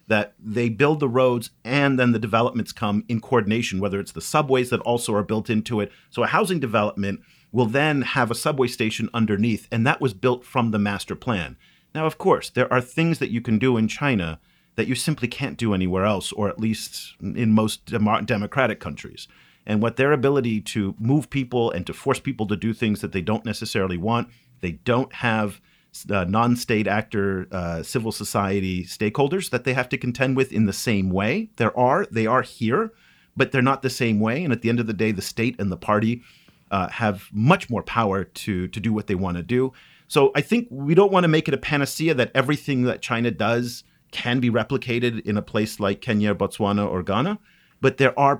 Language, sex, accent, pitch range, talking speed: English, male, American, 105-130 Hz, 215 wpm